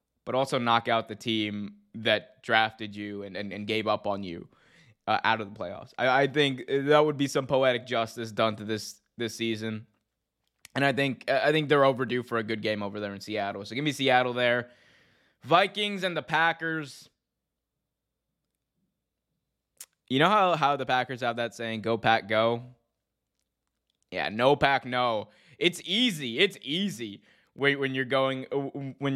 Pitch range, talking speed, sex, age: 115-145 Hz, 175 wpm, male, 20-39